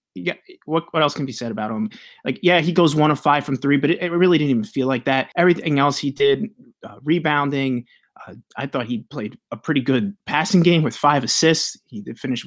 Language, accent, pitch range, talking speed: English, American, 130-170 Hz, 230 wpm